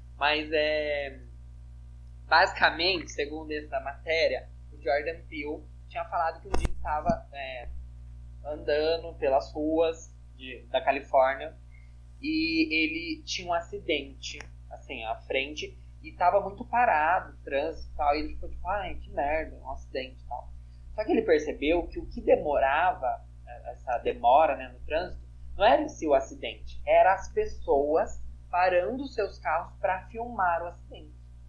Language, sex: Portuguese, male